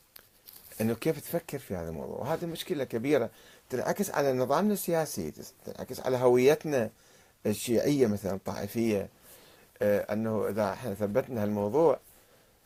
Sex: male